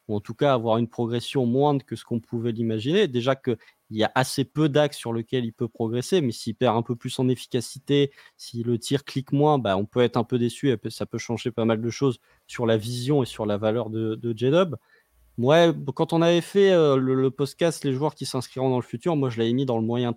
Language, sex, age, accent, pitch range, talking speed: French, male, 20-39, French, 115-145 Hz, 255 wpm